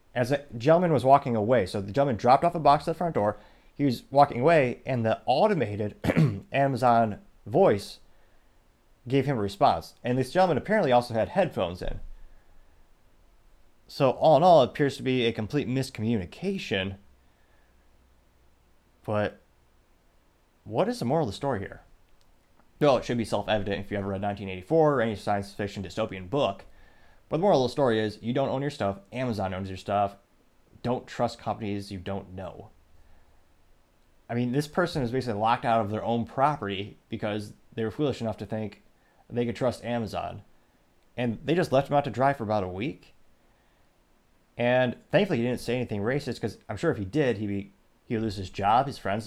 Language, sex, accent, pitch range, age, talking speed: English, male, American, 95-130 Hz, 30-49, 185 wpm